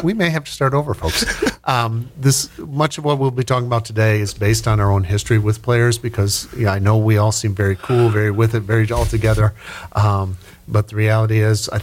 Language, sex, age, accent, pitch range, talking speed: English, male, 50-69, American, 100-120 Hz, 235 wpm